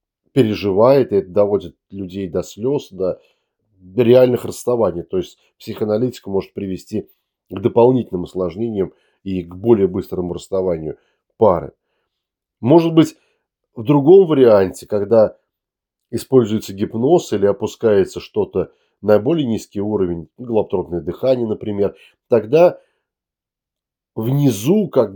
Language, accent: Russian, native